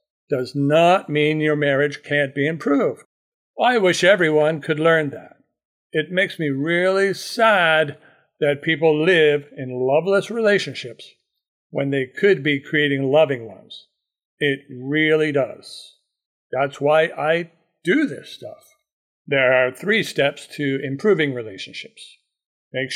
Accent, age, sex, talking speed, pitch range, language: American, 60-79, male, 130 wpm, 140-170 Hz, English